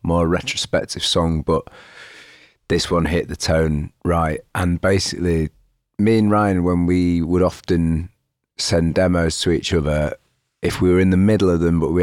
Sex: male